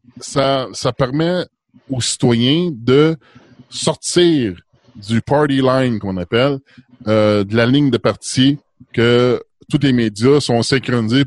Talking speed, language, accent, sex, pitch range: 140 wpm, French, Canadian, male, 120-145 Hz